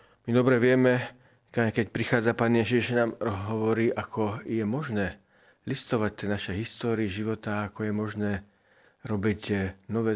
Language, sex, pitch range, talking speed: Slovak, male, 95-115 Hz, 125 wpm